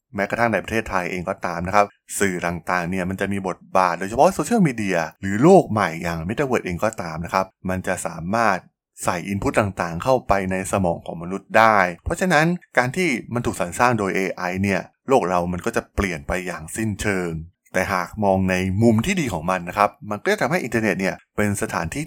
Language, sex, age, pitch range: Thai, male, 20-39, 90-115 Hz